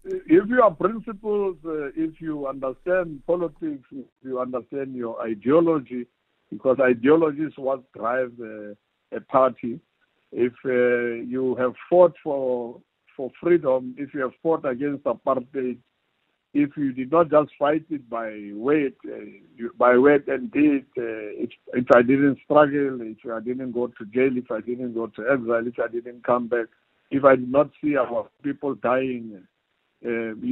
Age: 60-79